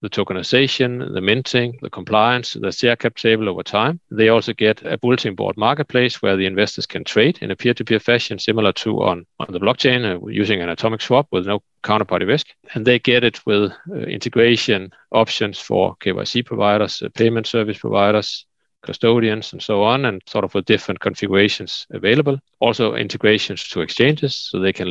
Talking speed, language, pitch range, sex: 185 wpm, English, 100-120 Hz, male